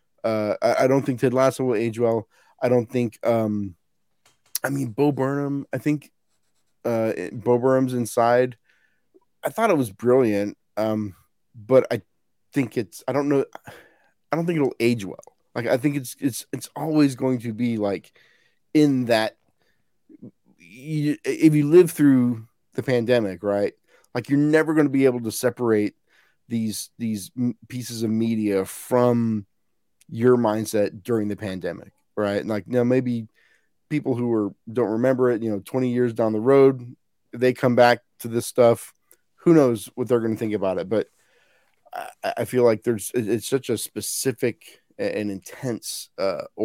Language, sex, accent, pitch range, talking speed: English, male, American, 110-130 Hz, 170 wpm